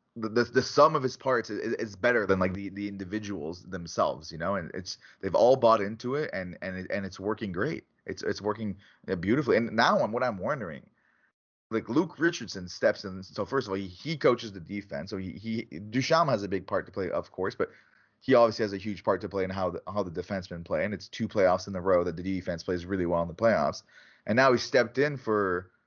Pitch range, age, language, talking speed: 95-115 Hz, 30-49, English, 245 wpm